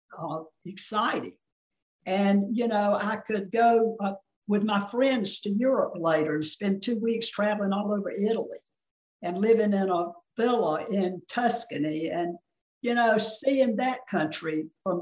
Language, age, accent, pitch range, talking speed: English, 60-79, American, 185-230 Hz, 150 wpm